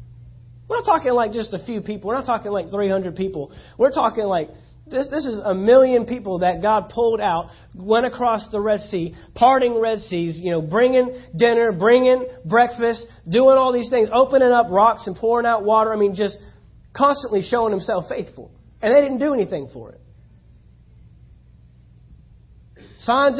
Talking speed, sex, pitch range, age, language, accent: 170 wpm, male, 145-225 Hz, 30-49, English, American